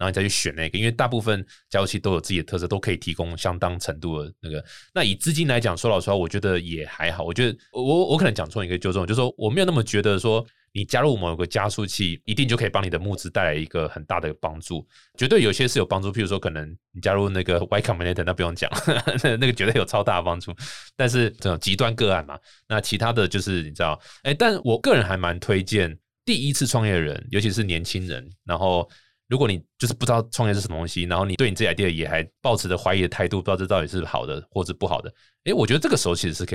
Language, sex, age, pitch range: Chinese, male, 20-39, 85-115 Hz